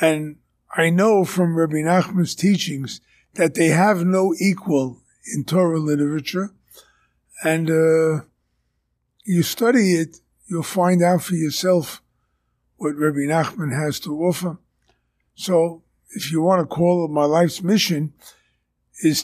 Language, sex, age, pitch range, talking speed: English, male, 50-69, 145-185 Hz, 130 wpm